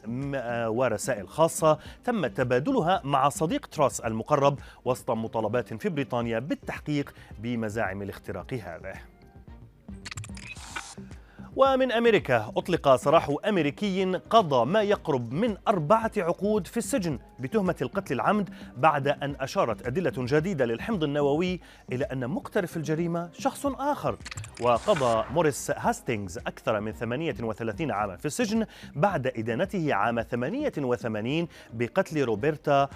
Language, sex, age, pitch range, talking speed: Arabic, male, 30-49, 120-180 Hz, 115 wpm